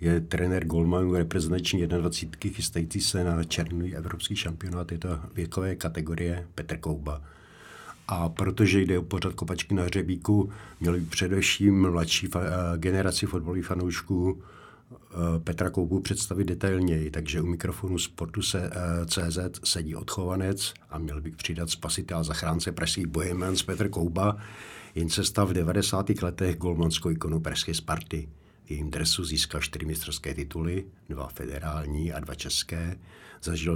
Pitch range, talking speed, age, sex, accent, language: 80-95 Hz, 135 wpm, 60-79, male, native, Czech